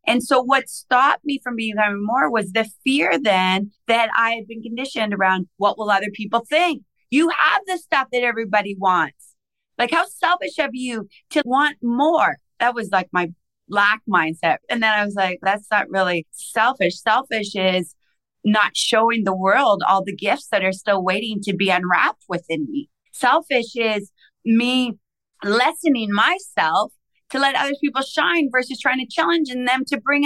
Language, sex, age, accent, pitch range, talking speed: English, female, 30-49, American, 200-270 Hz, 175 wpm